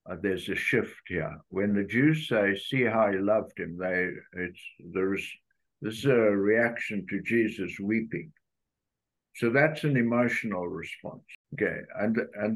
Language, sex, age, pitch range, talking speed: English, male, 60-79, 95-115 Hz, 160 wpm